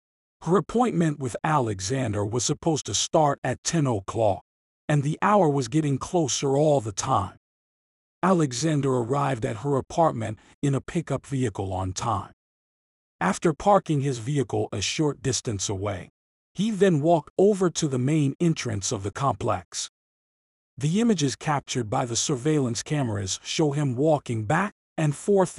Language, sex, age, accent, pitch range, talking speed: English, male, 50-69, American, 120-155 Hz, 150 wpm